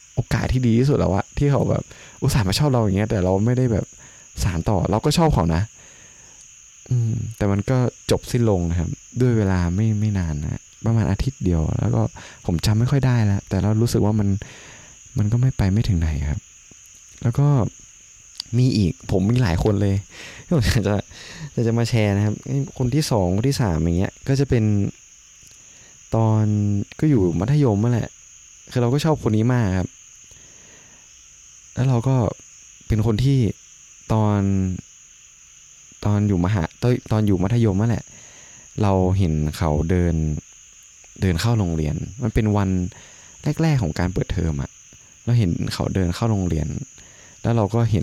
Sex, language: male, Thai